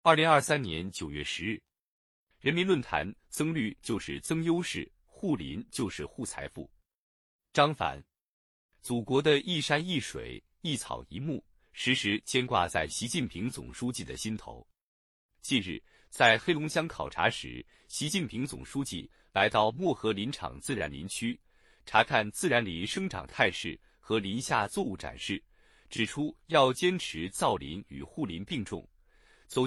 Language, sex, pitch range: Chinese, male, 100-145 Hz